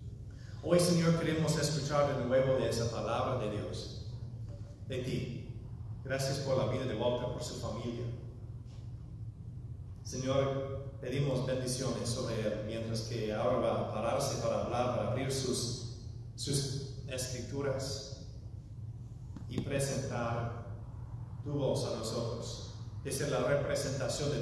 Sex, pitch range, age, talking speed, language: male, 115-135 Hz, 40-59, 125 wpm, English